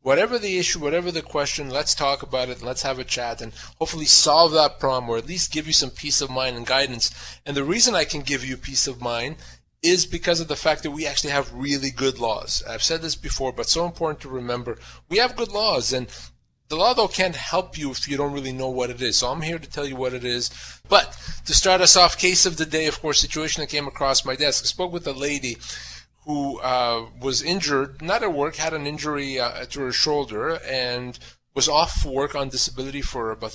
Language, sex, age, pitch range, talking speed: English, male, 30-49, 125-155 Hz, 240 wpm